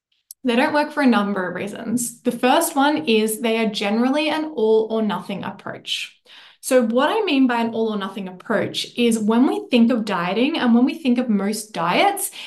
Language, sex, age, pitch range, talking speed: English, female, 10-29, 205-250 Hz, 205 wpm